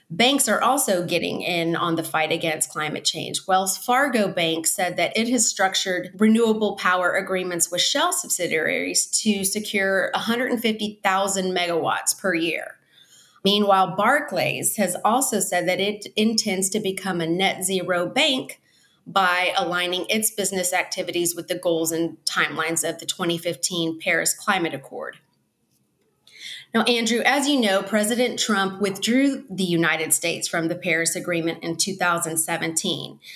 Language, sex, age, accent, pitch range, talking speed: English, female, 30-49, American, 170-210 Hz, 140 wpm